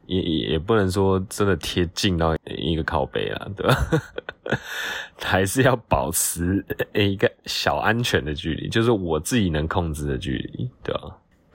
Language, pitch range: Chinese, 80-100 Hz